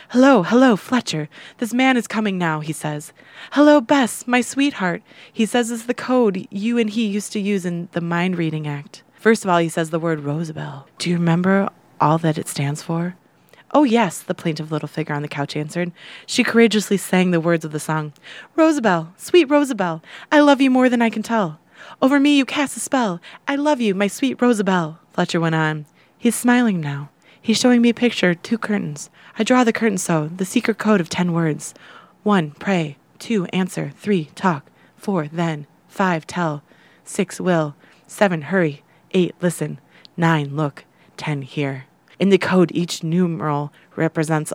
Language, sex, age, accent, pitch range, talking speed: English, female, 20-39, American, 155-220 Hz, 185 wpm